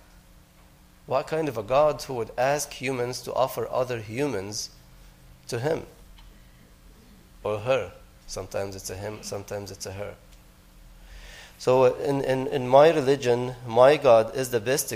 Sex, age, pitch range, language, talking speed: male, 30-49, 105-130 Hz, English, 145 wpm